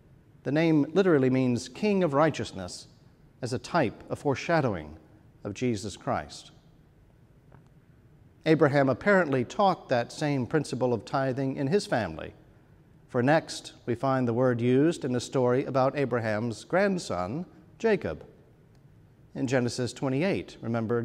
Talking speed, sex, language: 125 wpm, male, English